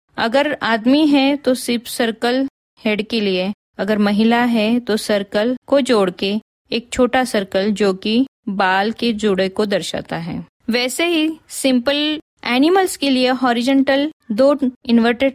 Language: Hindi